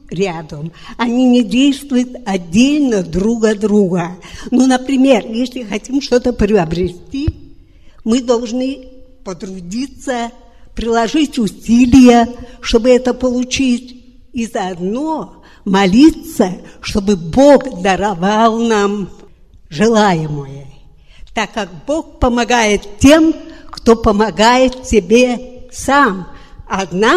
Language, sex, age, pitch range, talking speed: Russian, female, 60-79, 205-265 Hz, 85 wpm